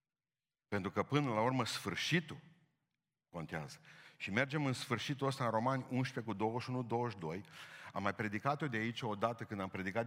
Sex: male